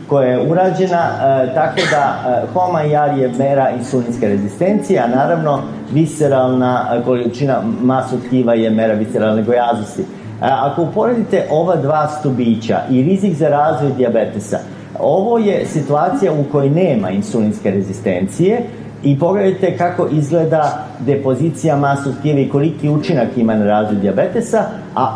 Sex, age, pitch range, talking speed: male, 50-69, 120-160 Hz, 135 wpm